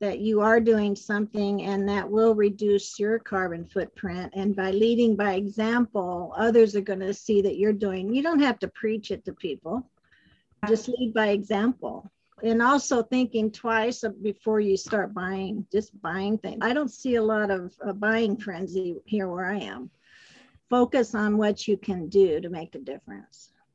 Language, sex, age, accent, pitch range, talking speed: English, female, 50-69, American, 195-225 Hz, 180 wpm